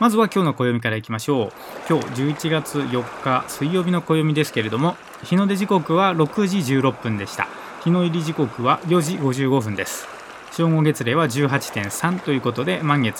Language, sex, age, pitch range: Japanese, male, 20-39, 125-170 Hz